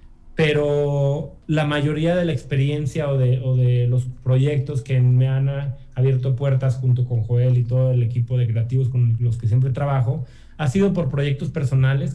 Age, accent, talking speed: 30-49, Mexican, 180 wpm